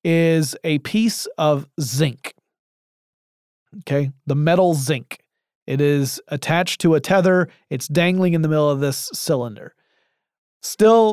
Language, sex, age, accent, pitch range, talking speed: English, male, 30-49, American, 145-190 Hz, 130 wpm